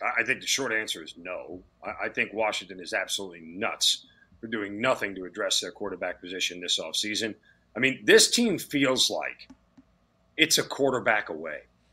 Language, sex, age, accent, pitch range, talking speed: English, male, 40-59, American, 105-135 Hz, 165 wpm